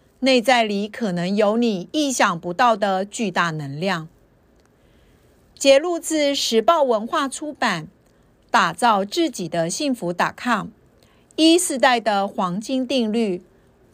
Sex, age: female, 50-69